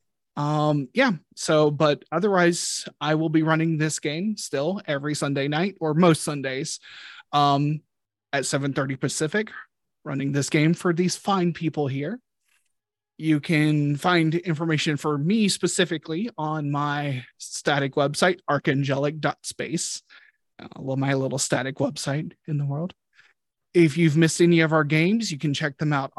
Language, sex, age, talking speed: English, male, 30-49, 140 wpm